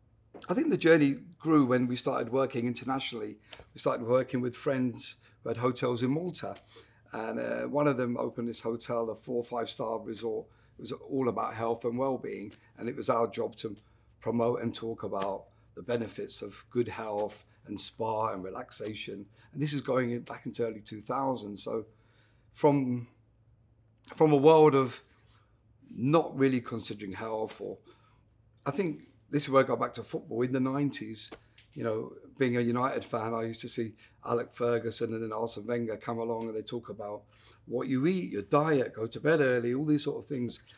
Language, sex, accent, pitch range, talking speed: English, male, British, 115-130 Hz, 190 wpm